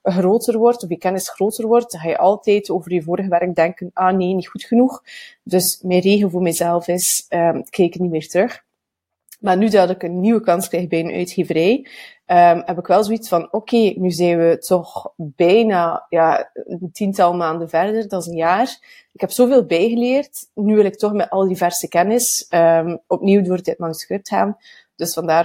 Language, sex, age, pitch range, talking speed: Dutch, female, 30-49, 180-230 Hz, 190 wpm